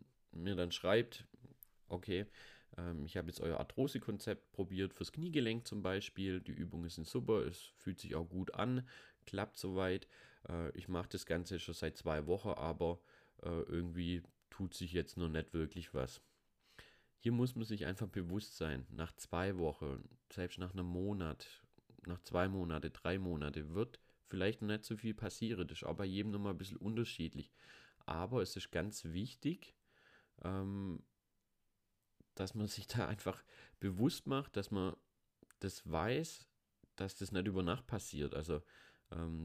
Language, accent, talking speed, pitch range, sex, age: German, German, 160 wpm, 85-105 Hz, male, 30-49